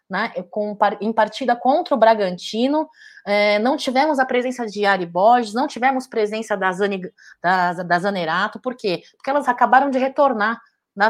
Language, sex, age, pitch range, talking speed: Portuguese, female, 30-49, 205-260 Hz, 170 wpm